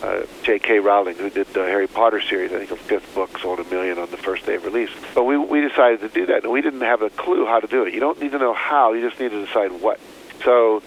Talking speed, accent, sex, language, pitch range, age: 295 wpm, American, male, English, 105-150 Hz, 50-69